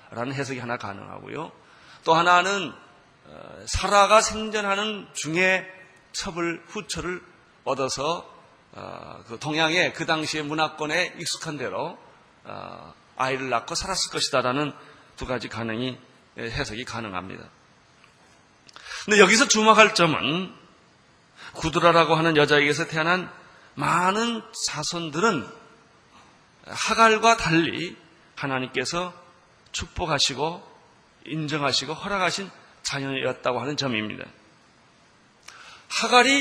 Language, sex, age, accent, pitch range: Korean, male, 30-49, native, 135-190 Hz